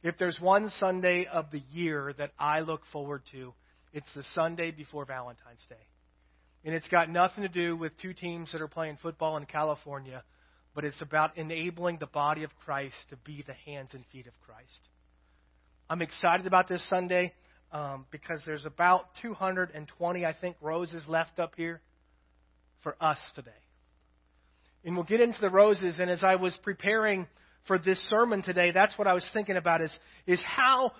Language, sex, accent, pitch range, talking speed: English, male, American, 145-195 Hz, 180 wpm